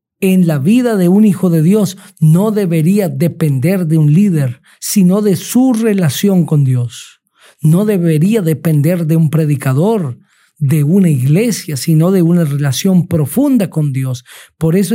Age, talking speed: 50-69, 155 wpm